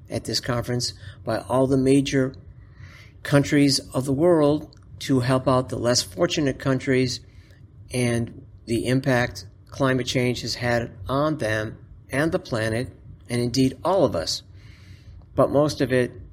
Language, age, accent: English, 50-69, American